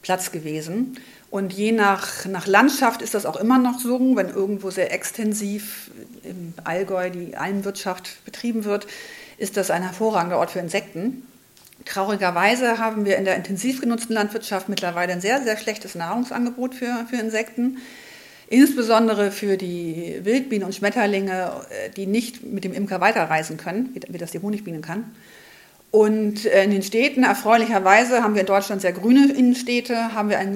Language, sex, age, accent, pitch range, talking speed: German, female, 50-69, German, 190-230 Hz, 155 wpm